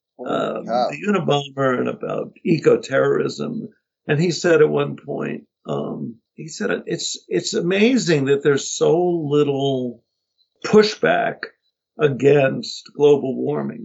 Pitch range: 140-195 Hz